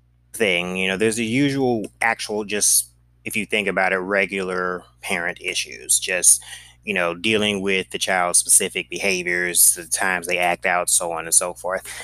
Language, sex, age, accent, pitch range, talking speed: English, male, 20-39, American, 85-115 Hz, 180 wpm